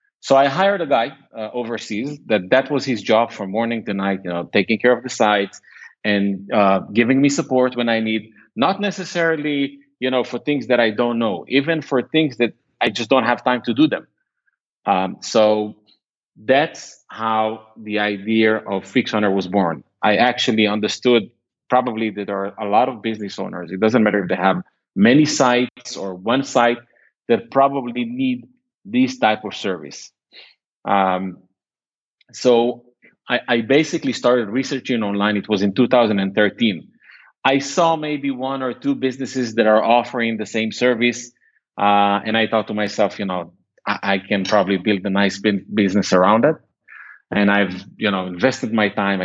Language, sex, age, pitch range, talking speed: English, male, 30-49, 105-140 Hz, 175 wpm